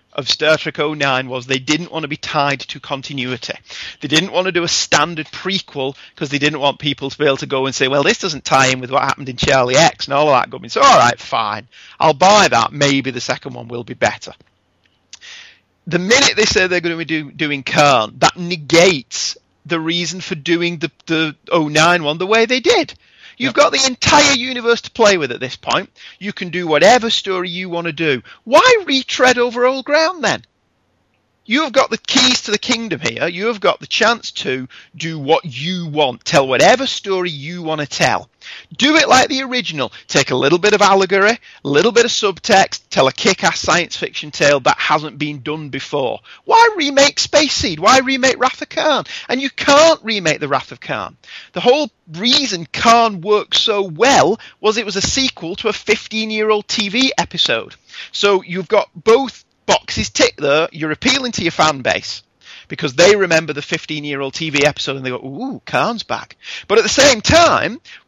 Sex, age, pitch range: male, 30-49, 150-235 Hz